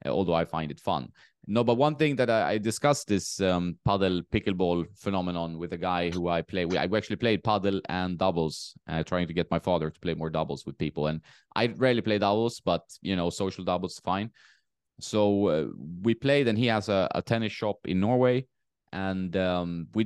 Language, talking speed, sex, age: English, 205 wpm, male, 20-39